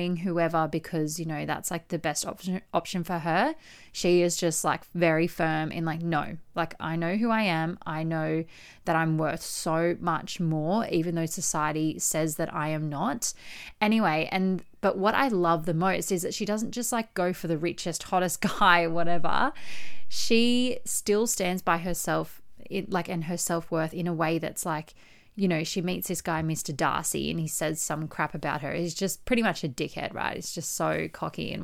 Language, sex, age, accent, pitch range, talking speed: English, female, 20-39, Australian, 160-205 Hz, 205 wpm